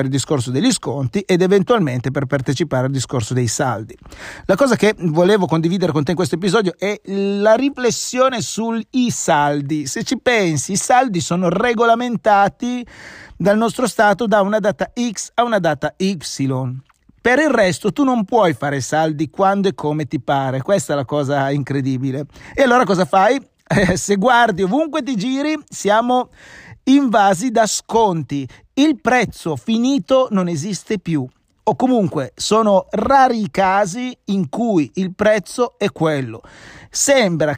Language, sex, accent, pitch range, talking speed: Italian, male, native, 160-240 Hz, 150 wpm